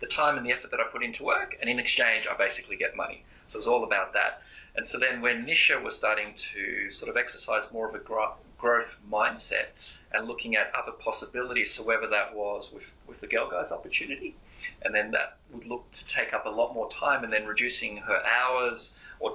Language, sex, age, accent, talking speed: English, male, 30-49, Australian, 220 wpm